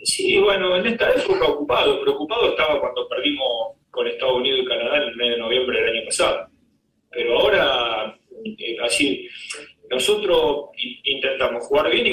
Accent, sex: Argentinian, male